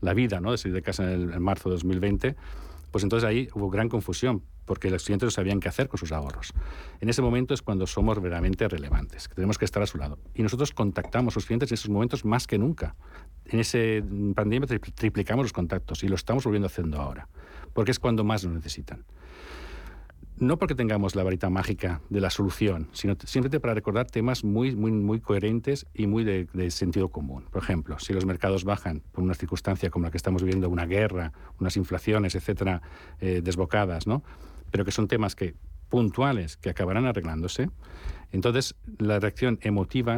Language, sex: Spanish, male